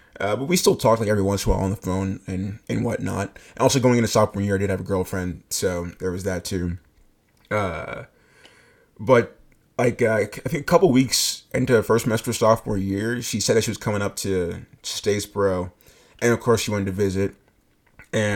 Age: 20-39